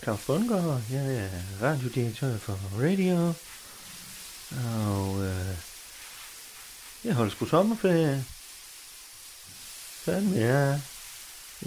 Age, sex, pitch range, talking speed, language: 30-49, male, 110-145 Hz, 95 wpm, Danish